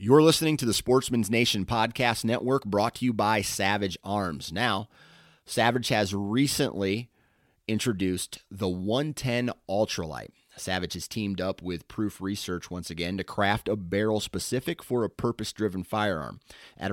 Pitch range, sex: 90-110 Hz, male